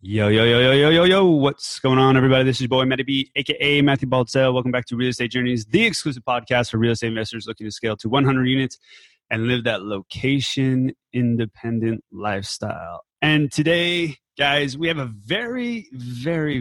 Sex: male